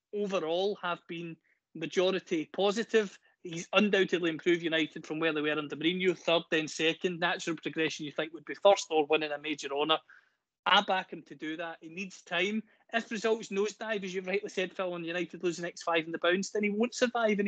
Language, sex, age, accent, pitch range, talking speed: English, male, 30-49, British, 160-195 Hz, 215 wpm